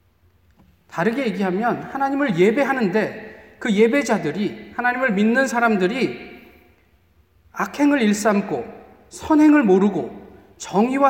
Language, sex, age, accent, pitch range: Korean, male, 40-59, native, 170-255 Hz